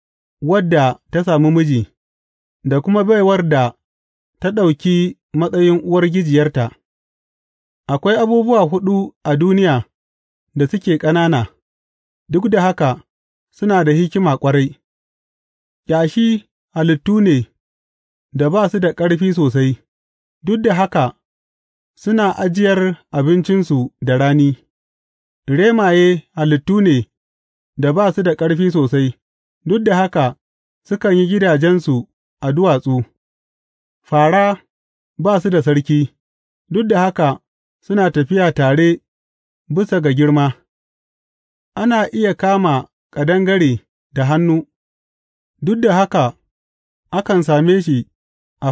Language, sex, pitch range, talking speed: English, male, 125-185 Hz, 85 wpm